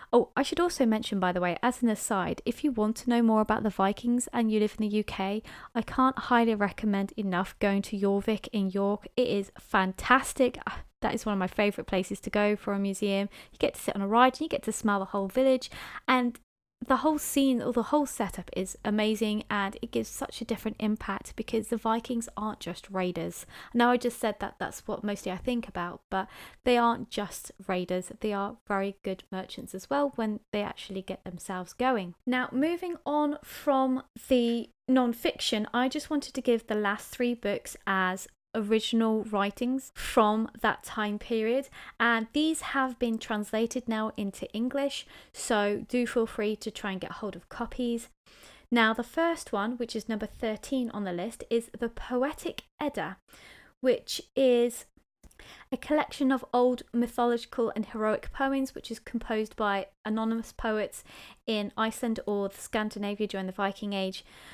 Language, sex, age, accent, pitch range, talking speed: English, female, 20-39, British, 205-245 Hz, 185 wpm